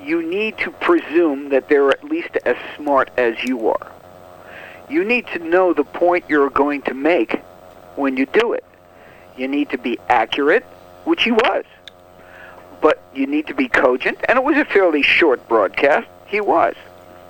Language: English